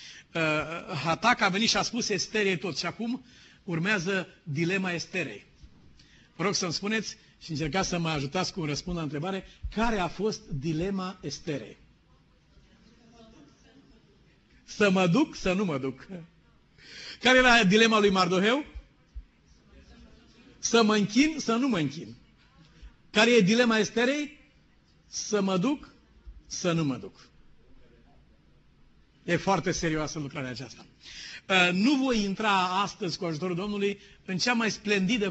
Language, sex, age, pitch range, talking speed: Romanian, male, 50-69, 160-200 Hz, 130 wpm